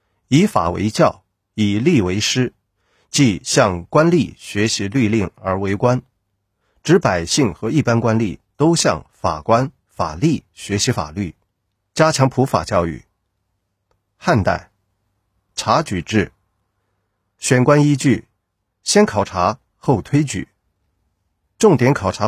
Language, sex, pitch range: Chinese, male, 95-120 Hz